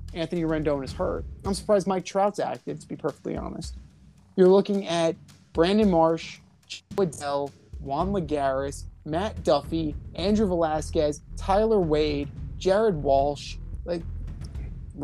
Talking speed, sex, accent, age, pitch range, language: 125 wpm, male, American, 30-49, 145-185 Hz, English